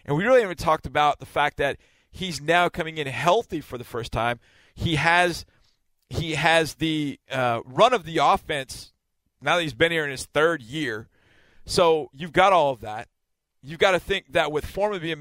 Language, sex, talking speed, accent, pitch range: English, male, 200 wpm, American, 115-160 Hz